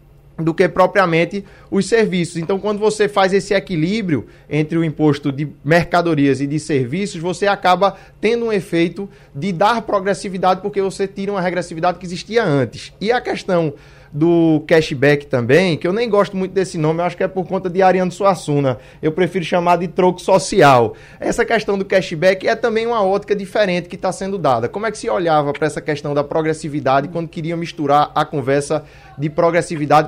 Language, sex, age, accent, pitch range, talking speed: Portuguese, male, 20-39, Brazilian, 155-195 Hz, 185 wpm